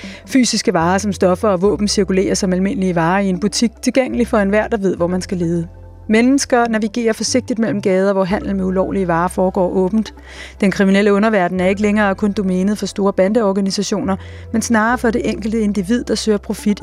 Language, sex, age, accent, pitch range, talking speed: Danish, female, 30-49, native, 175-220 Hz, 195 wpm